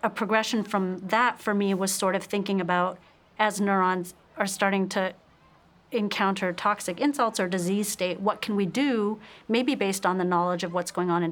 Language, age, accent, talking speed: English, 40-59, American, 190 wpm